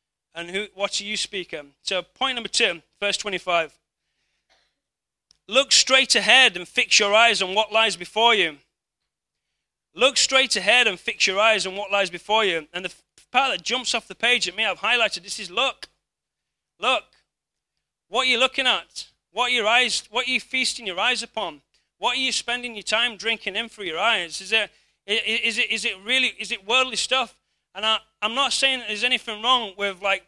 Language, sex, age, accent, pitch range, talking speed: English, male, 30-49, British, 175-235 Hz, 200 wpm